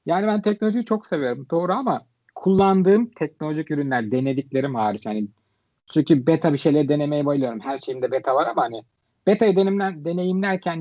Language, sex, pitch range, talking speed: Turkish, male, 135-195 Hz, 150 wpm